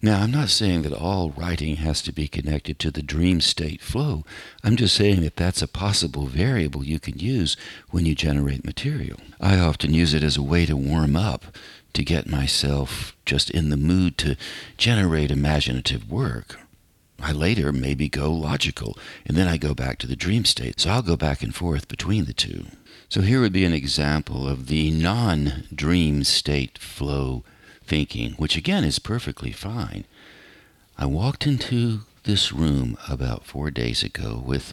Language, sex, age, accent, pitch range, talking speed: English, male, 60-79, American, 70-100 Hz, 175 wpm